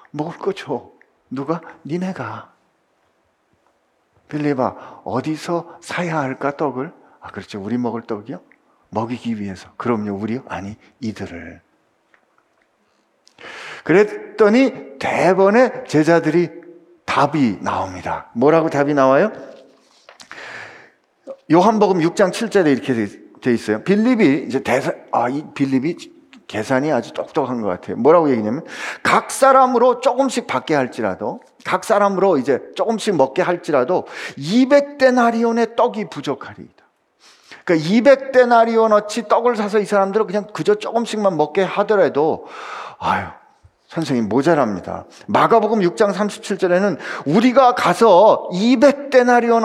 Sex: male